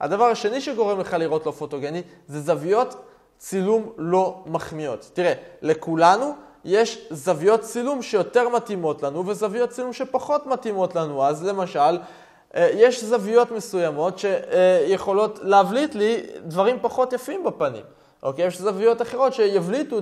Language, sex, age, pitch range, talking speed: Hebrew, male, 20-39, 165-230 Hz, 125 wpm